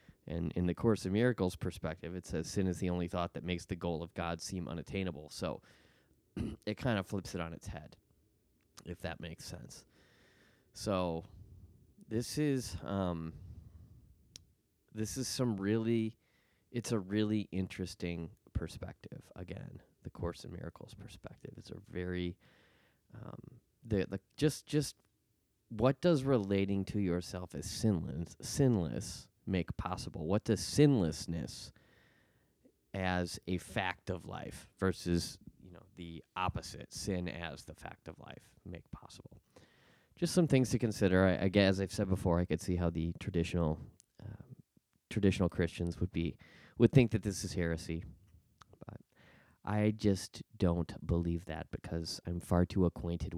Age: 20-39